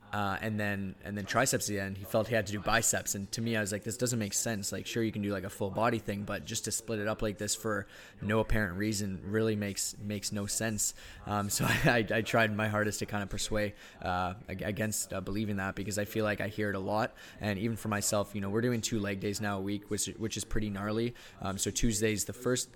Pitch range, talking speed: 100-110 Hz, 265 wpm